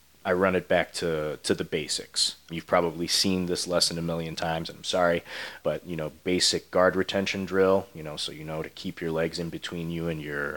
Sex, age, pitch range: male, 30-49, 80-90 Hz